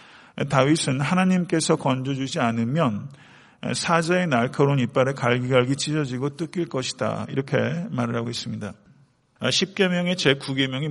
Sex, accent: male, native